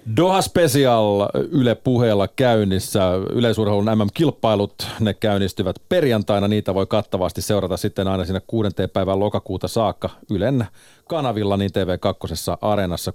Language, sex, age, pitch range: Finnish, male, 40-59, 95-115 Hz